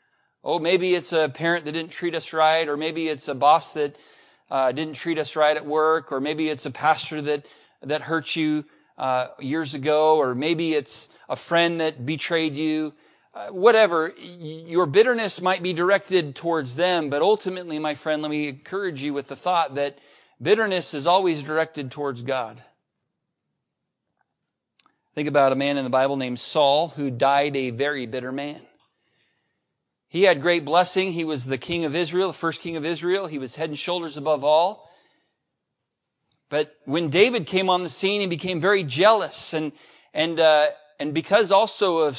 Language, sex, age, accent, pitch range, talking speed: English, male, 40-59, American, 145-175 Hz, 180 wpm